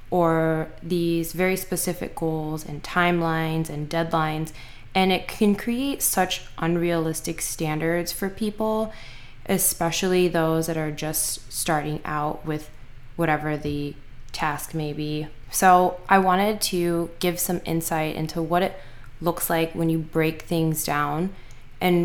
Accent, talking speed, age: American, 135 wpm, 20-39